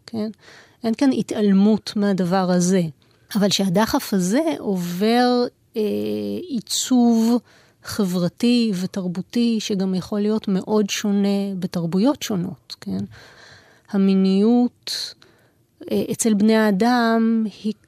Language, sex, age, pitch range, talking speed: Hebrew, female, 30-49, 190-230 Hz, 95 wpm